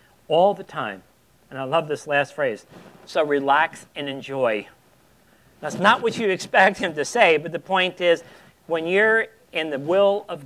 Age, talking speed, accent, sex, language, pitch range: 50-69, 180 wpm, American, male, English, 130-175 Hz